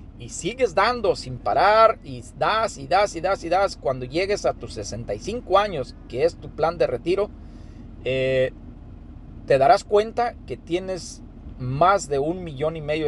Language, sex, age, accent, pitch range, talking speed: Spanish, male, 40-59, Mexican, 135-205 Hz, 170 wpm